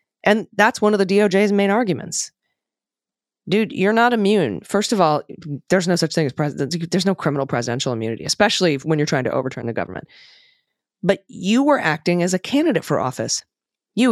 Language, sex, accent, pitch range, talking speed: English, female, American, 140-190 Hz, 185 wpm